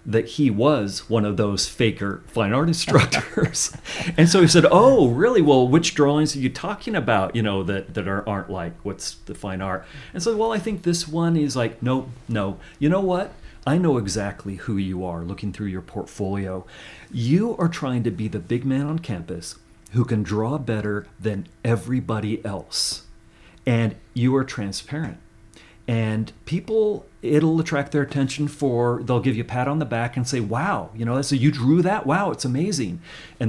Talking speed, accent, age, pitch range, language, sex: 190 wpm, American, 40-59, 105-145 Hz, English, male